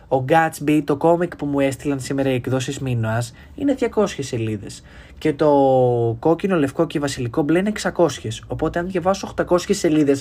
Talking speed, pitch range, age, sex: 165 wpm, 125-185 Hz, 20-39, male